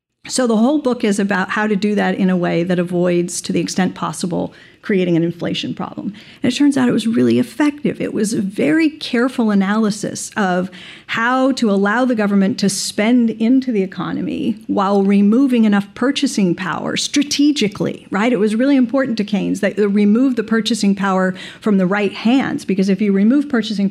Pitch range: 185-230 Hz